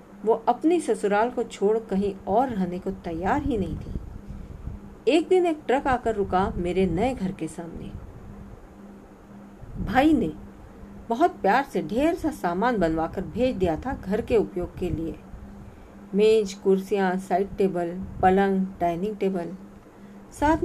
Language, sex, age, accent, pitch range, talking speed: Hindi, female, 50-69, native, 175-235 Hz, 140 wpm